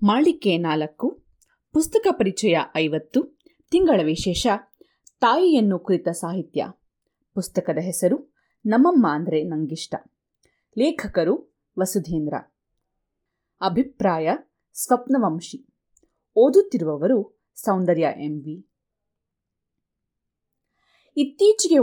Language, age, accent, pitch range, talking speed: Kannada, 30-49, native, 175-260 Hz, 65 wpm